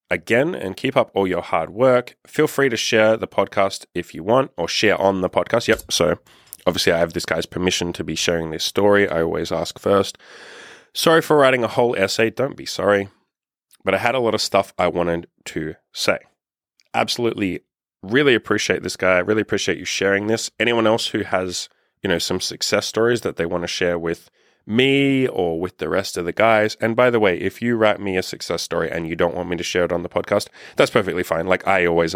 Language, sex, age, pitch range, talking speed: English, male, 20-39, 85-115 Hz, 225 wpm